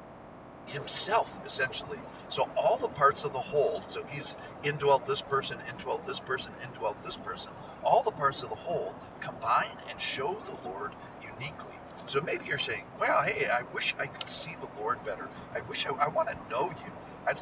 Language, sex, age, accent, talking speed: English, male, 50-69, American, 185 wpm